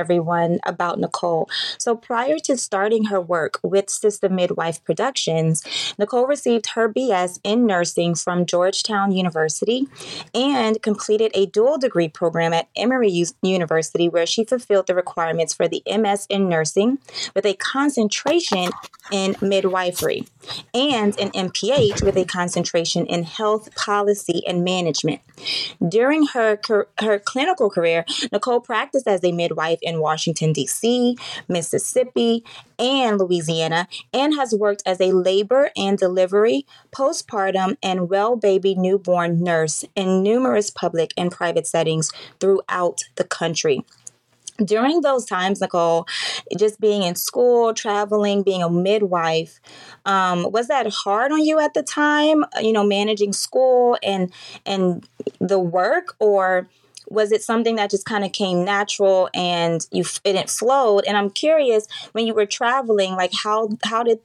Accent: American